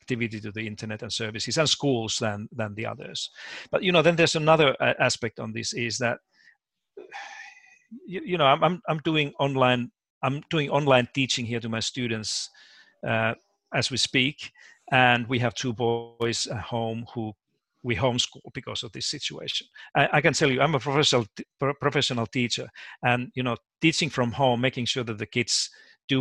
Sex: male